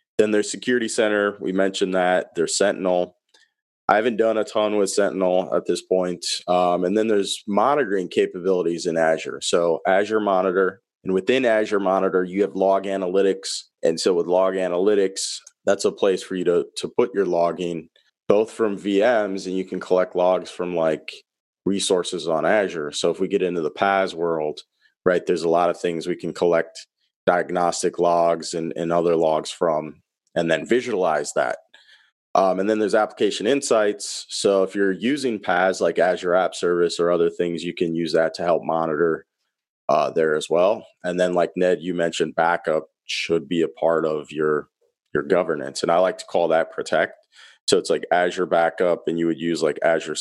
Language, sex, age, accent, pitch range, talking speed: English, male, 30-49, American, 85-105 Hz, 185 wpm